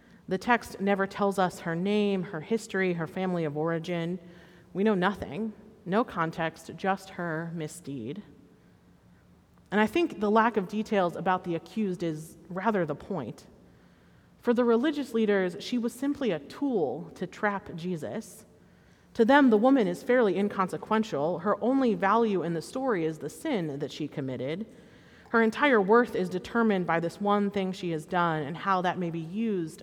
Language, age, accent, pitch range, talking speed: English, 30-49, American, 170-215 Hz, 170 wpm